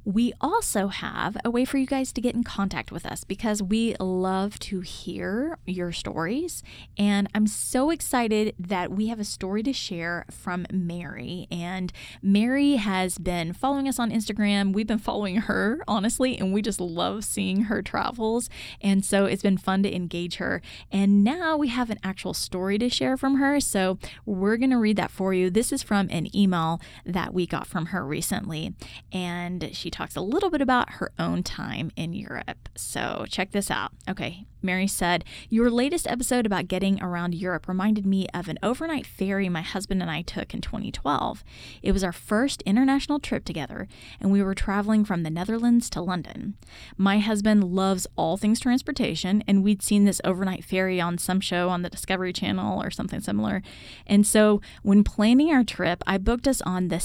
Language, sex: English, female